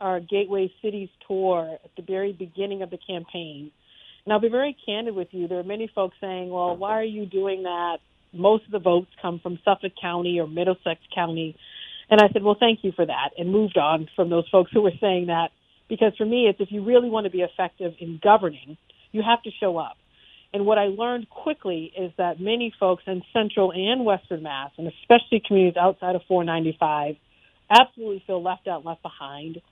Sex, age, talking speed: female, 50-69, 210 wpm